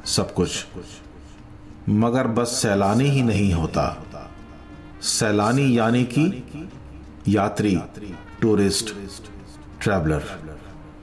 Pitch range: 95-120 Hz